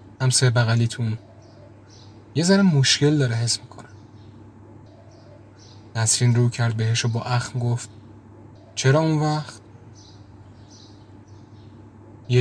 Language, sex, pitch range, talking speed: Persian, male, 110-125 Hz, 95 wpm